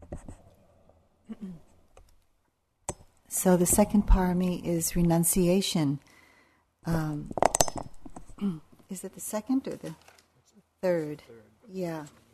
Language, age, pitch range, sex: English, 50-69, 150-185 Hz, female